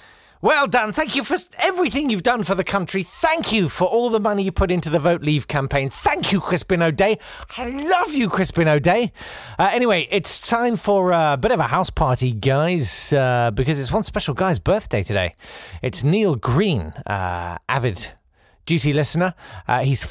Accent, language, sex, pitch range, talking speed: British, English, male, 125-195 Hz, 185 wpm